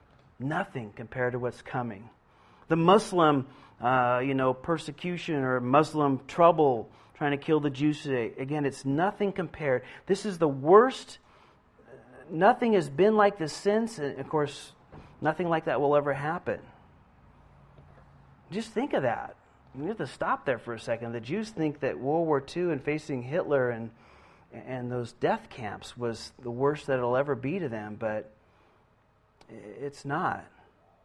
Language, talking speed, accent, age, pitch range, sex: Finnish, 160 wpm, American, 40-59, 130-170 Hz, male